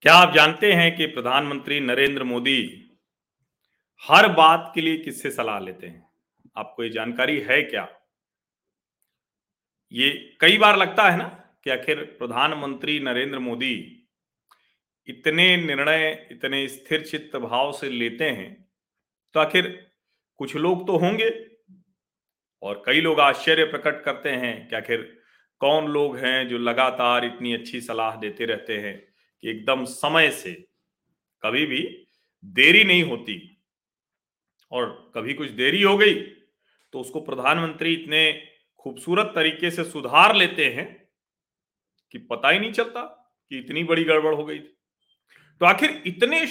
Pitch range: 140-185 Hz